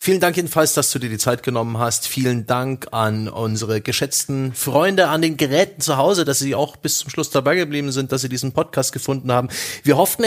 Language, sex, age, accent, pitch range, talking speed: German, male, 30-49, German, 110-140 Hz, 220 wpm